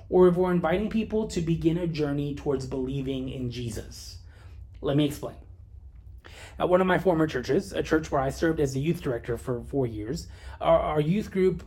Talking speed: 195 wpm